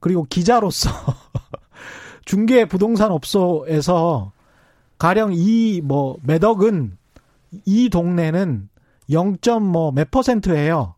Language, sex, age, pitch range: Korean, male, 40-59, 150-235 Hz